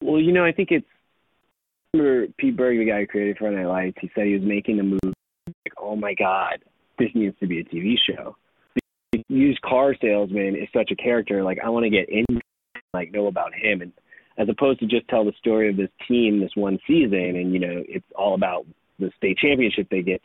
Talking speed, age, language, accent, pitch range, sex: 230 wpm, 20-39, English, American, 95-115 Hz, male